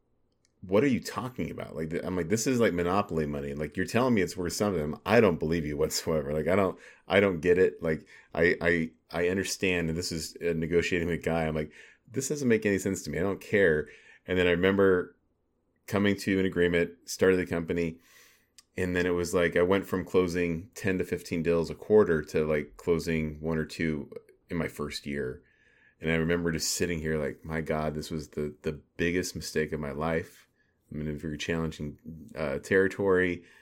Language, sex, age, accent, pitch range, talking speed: English, male, 30-49, American, 80-90 Hz, 215 wpm